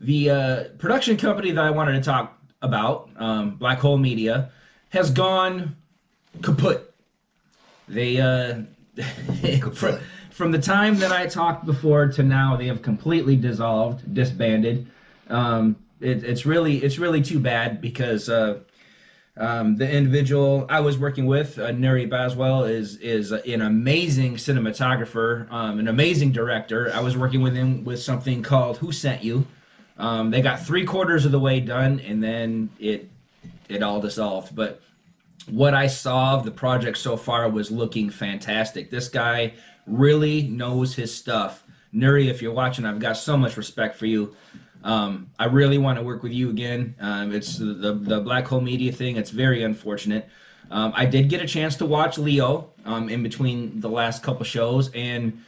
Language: English